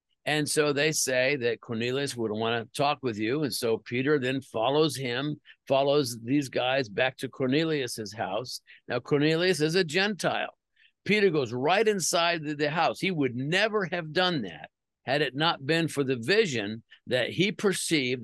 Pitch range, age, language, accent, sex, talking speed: 130-160 Hz, 50-69, English, American, male, 170 wpm